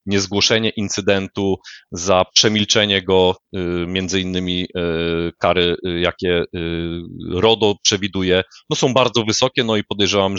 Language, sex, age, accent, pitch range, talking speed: Polish, male, 30-49, native, 95-115 Hz, 105 wpm